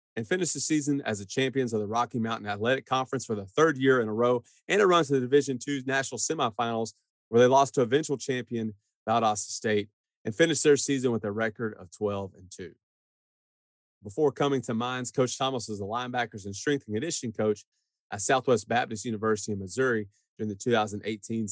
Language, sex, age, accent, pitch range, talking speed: English, male, 30-49, American, 110-140 Hz, 195 wpm